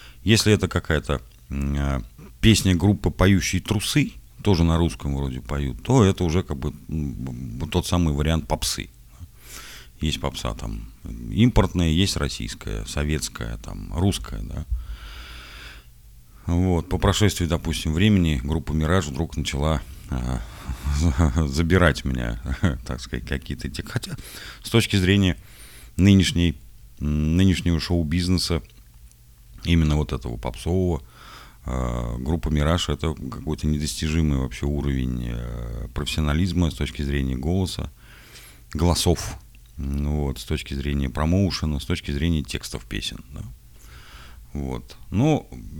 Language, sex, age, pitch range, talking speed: Russian, male, 40-59, 65-90 Hz, 110 wpm